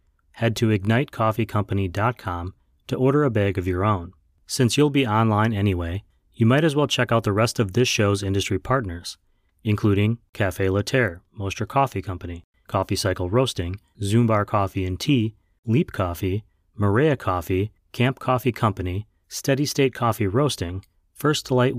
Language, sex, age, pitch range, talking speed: English, male, 30-49, 95-125 Hz, 150 wpm